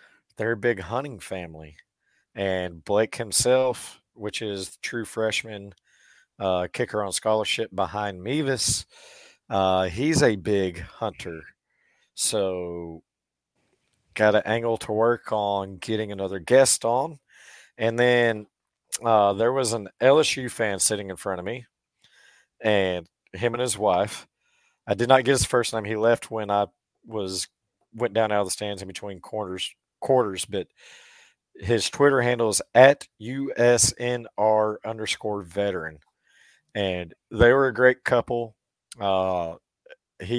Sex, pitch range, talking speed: male, 95-120 Hz, 135 wpm